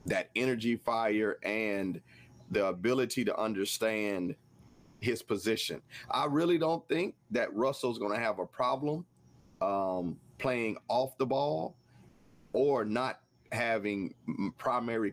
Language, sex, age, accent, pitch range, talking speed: English, male, 40-59, American, 100-125 Hz, 120 wpm